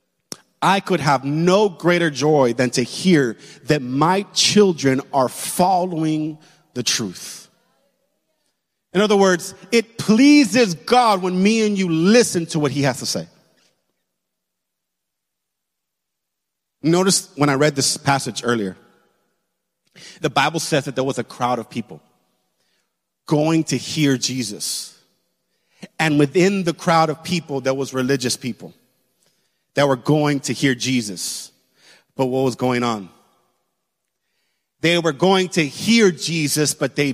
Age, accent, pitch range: 30-49, American, 140-185 Hz